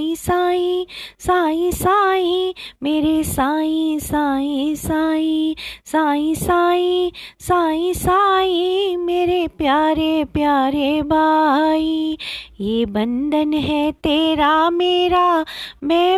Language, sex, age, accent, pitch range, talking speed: Hindi, female, 20-39, native, 300-370 Hz, 80 wpm